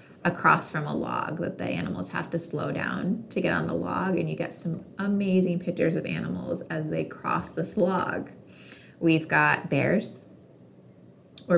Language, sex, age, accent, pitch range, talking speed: English, female, 20-39, American, 155-180 Hz, 170 wpm